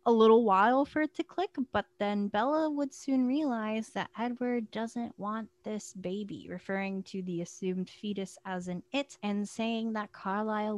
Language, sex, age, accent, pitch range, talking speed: English, female, 20-39, American, 185-230 Hz, 175 wpm